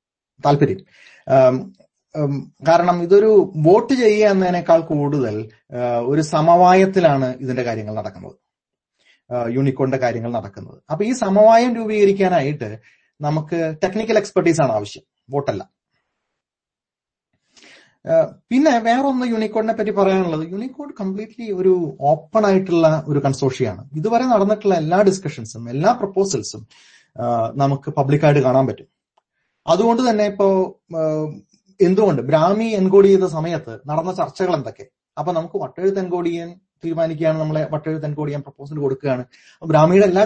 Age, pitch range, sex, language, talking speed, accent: 30-49, 135-195 Hz, male, Malayalam, 105 wpm, native